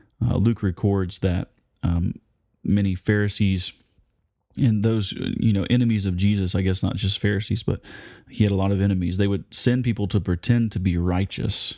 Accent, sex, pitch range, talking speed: American, male, 90-105 Hz, 180 wpm